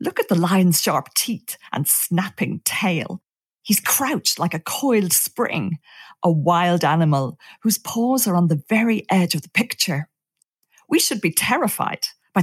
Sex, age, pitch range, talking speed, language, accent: female, 40-59, 165-225 Hz, 160 wpm, English, British